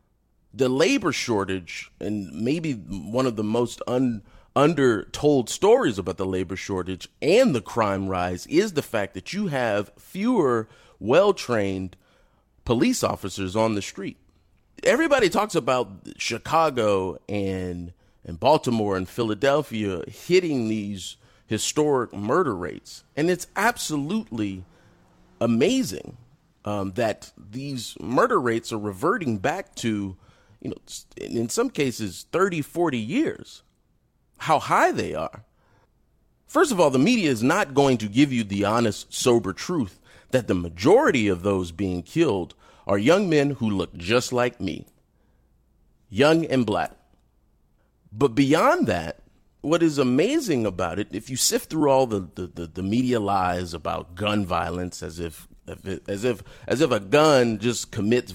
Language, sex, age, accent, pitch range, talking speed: English, male, 30-49, American, 95-130 Hz, 140 wpm